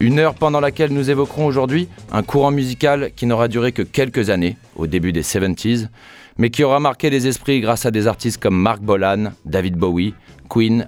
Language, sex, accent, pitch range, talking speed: French, male, French, 100-140 Hz, 205 wpm